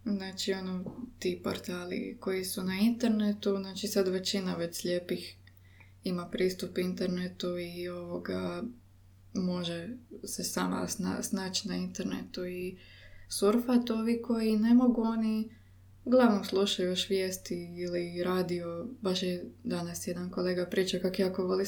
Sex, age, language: female, 20-39, Croatian